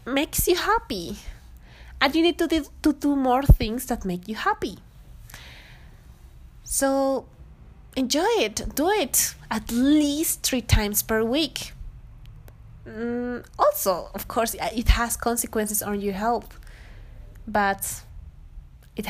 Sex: female